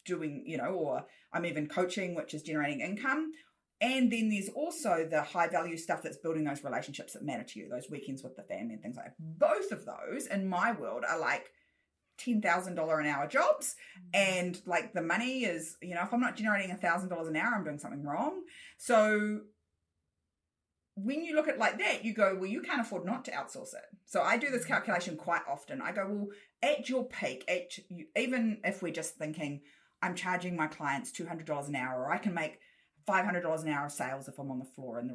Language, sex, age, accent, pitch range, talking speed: English, female, 30-49, Australian, 165-230 Hz, 210 wpm